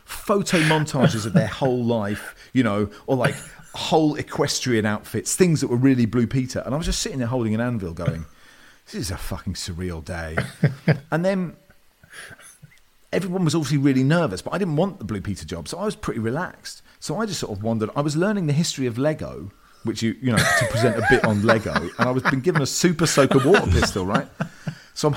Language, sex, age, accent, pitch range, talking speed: English, male, 40-59, British, 95-150 Hz, 215 wpm